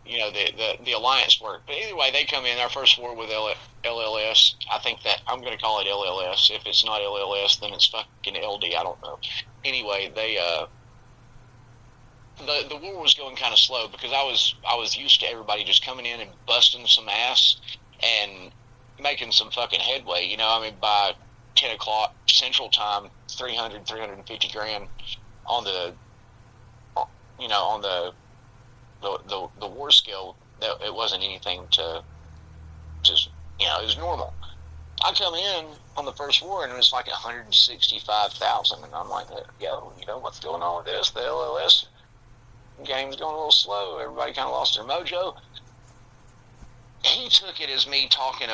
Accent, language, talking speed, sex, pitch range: American, English, 180 wpm, male, 105-125 Hz